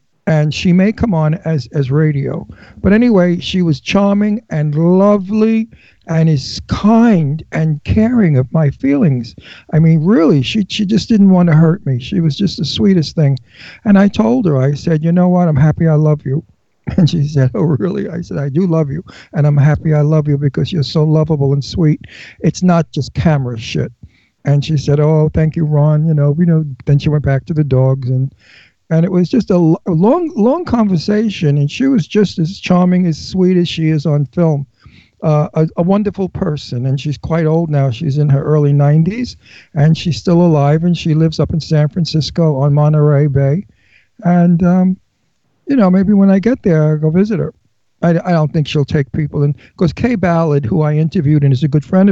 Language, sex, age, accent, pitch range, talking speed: English, male, 60-79, American, 145-180 Hz, 215 wpm